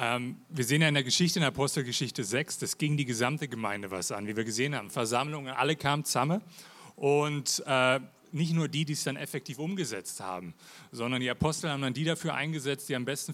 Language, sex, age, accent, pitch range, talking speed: German, male, 30-49, German, 130-160 Hz, 215 wpm